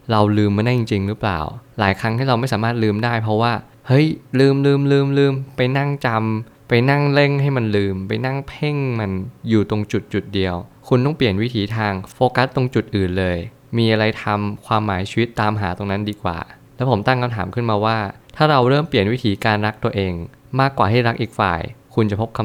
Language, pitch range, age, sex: Thai, 100-125 Hz, 20-39, male